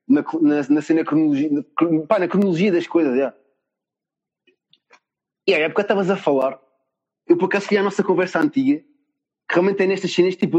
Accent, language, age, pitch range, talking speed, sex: Portuguese, Portuguese, 20-39, 175-230 Hz, 180 wpm, male